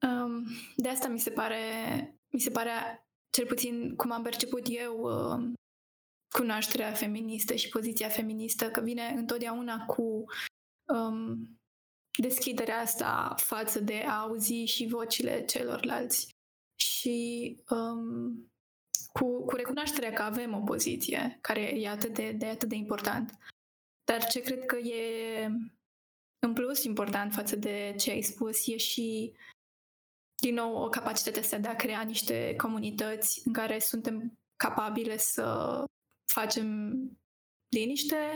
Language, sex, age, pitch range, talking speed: Romanian, female, 20-39, 220-245 Hz, 125 wpm